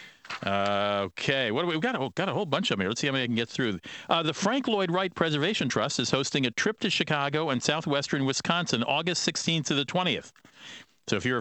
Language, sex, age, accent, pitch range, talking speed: English, male, 50-69, American, 110-140 Hz, 230 wpm